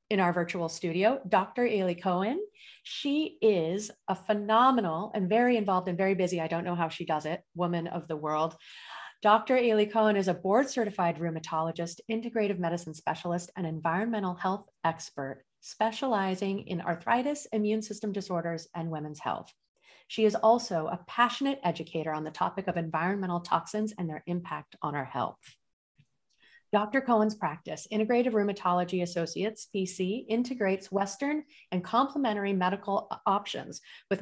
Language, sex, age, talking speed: English, female, 30-49, 145 wpm